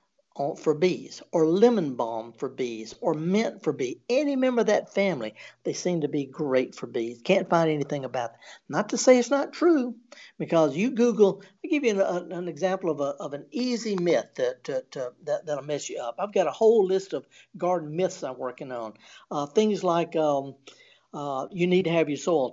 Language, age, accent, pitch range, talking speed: English, 60-79, American, 155-210 Hz, 195 wpm